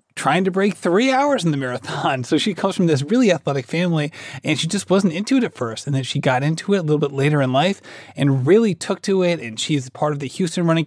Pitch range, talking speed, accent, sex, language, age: 140-185 Hz, 265 wpm, American, male, English, 30-49